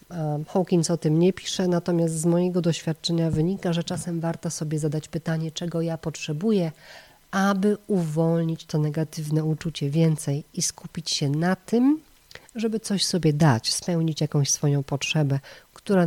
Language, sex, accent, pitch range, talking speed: Polish, female, native, 150-180 Hz, 145 wpm